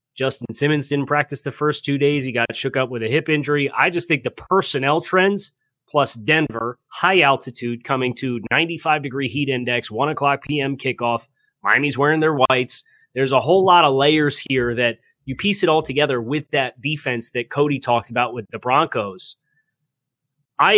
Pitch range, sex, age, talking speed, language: 125-155 Hz, male, 30-49, 180 wpm, English